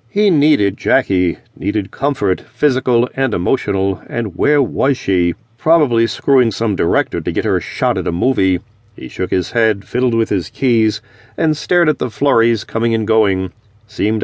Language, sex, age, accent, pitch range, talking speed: English, male, 50-69, American, 105-135 Hz, 175 wpm